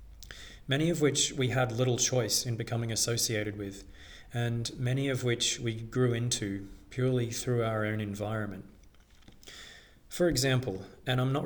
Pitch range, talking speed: 95-130 Hz, 145 wpm